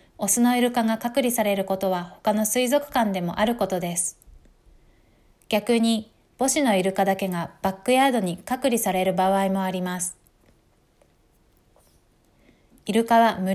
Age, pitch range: 20-39, 190-235 Hz